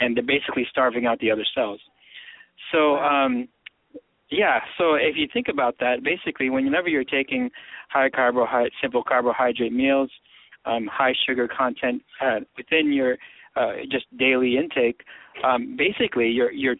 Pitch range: 125-165 Hz